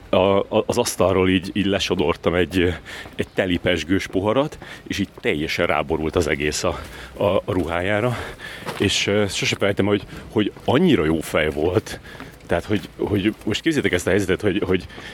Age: 30-49